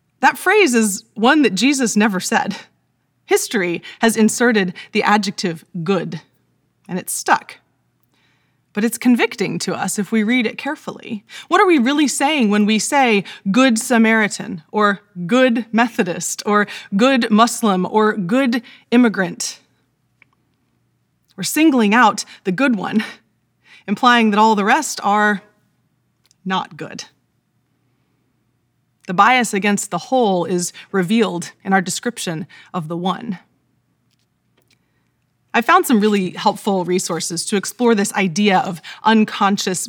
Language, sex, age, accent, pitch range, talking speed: English, female, 30-49, American, 185-235 Hz, 130 wpm